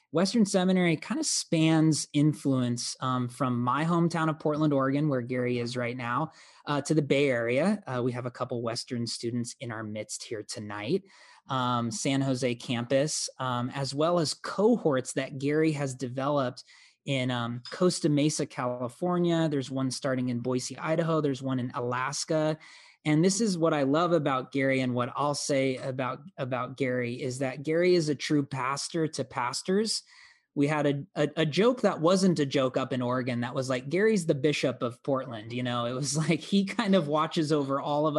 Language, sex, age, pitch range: English, male, 20-39, 125-160 Hz